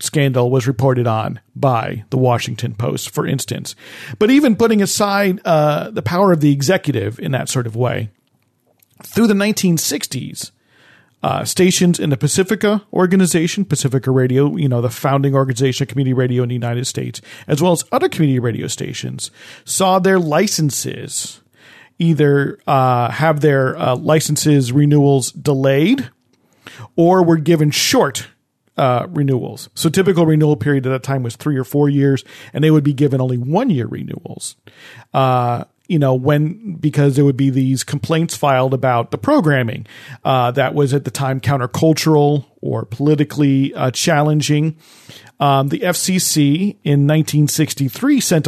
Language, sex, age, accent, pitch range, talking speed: English, male, 40-59, American, 130-160 Hz, 150 wpm